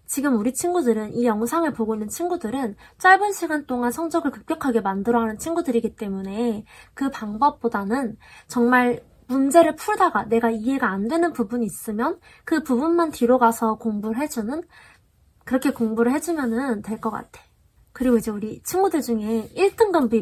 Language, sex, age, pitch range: Korean, female, 20-39, 225-305 Hz